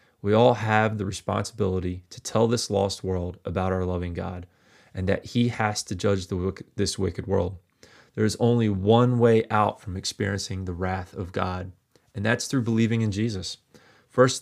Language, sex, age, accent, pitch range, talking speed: English, male, 30-49, American, 95-110 Hz, 175 wpm